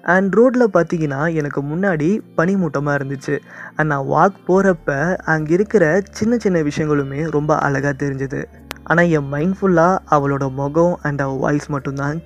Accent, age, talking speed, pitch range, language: native, 20-39, 135 wpm, 145-180 Hz, Tamil